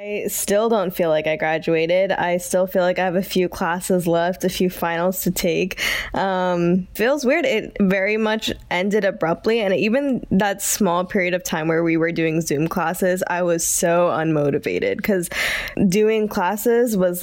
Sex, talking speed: female, 180 wpm